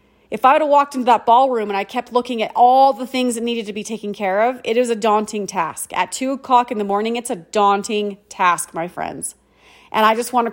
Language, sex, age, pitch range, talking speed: English, female, 30-49, 195-245 Hz, 255 wpm